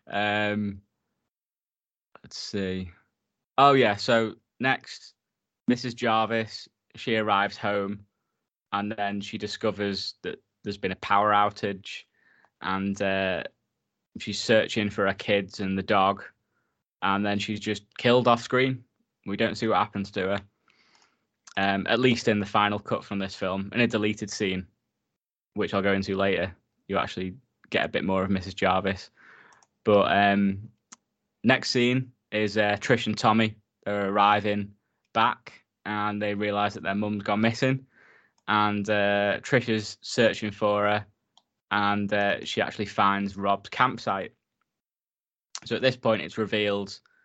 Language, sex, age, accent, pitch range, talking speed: English, male, 20-39, British, 100-110 Hz, 145 wpm